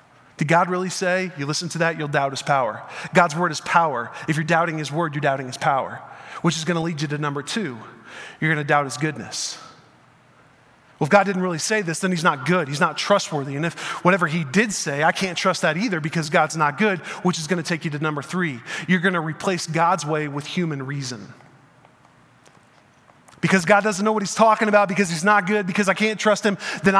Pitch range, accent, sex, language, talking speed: 155-195 Hz, American, male, English, 235 wpm